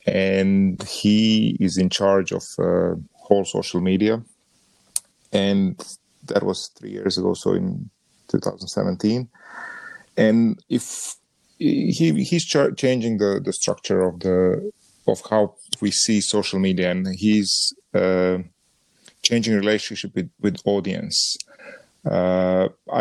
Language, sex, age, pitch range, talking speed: English, male, 30-49, 95-115 Hz, 115 wpm